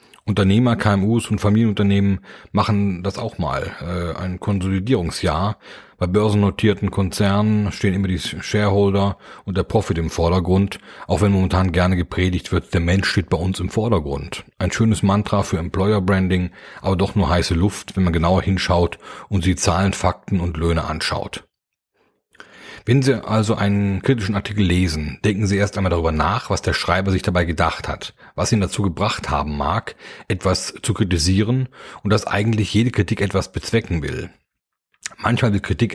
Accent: German